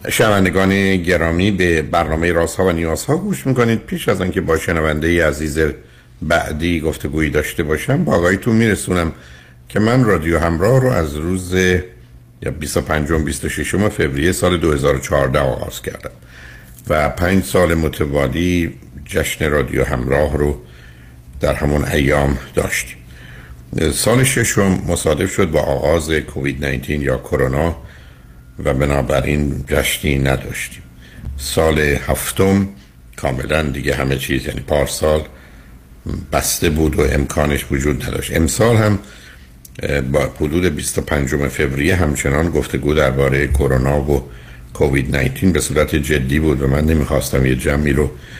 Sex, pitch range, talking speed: male, 65-85 Hz, 130 wpm